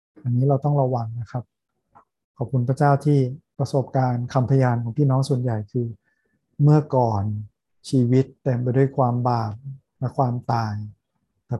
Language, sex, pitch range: Thai, male, 120-140 Hz